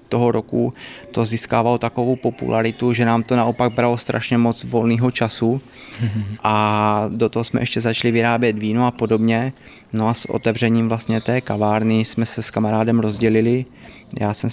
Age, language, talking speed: 20-39, Czech, 160 wpm